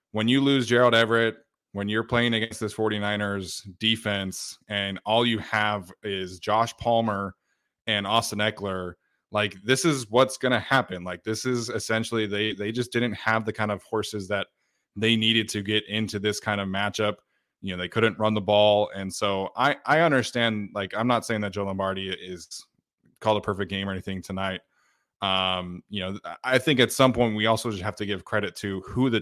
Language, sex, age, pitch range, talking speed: English, male, 20-39, 100-120 Hz, 200 wpm